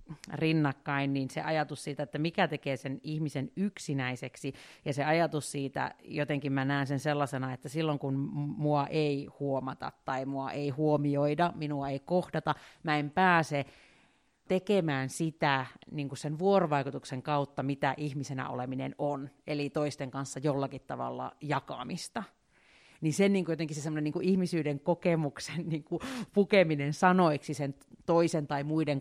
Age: 40-59